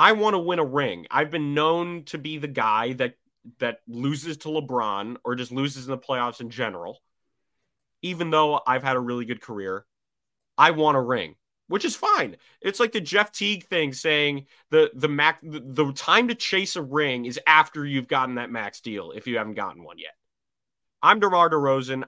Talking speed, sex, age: 200 wpm, male, 30-49